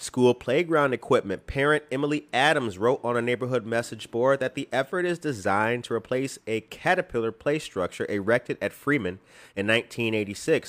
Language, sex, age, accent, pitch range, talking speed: English, male, 30-49, American, 115-150 Hz, 155 wpm